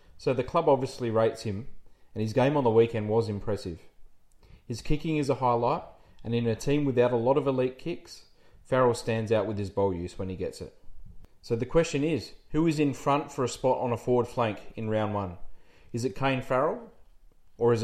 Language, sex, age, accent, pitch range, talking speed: English, male, 30-49, Australian, 110-140 Hz, 215 wpm